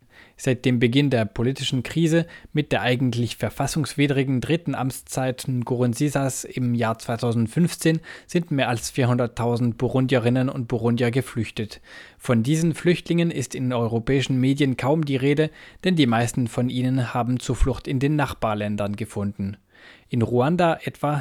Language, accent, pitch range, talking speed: German, German, 115-140 Hz, 135 wpm